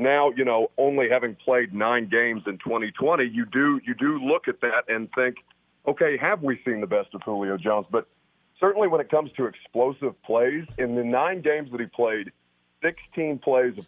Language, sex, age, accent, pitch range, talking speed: English, male, 40-59, American, 110-145 Hz, 200 wpm